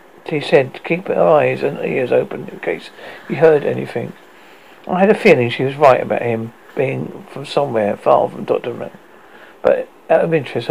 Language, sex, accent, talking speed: English, male, British, 195 wpm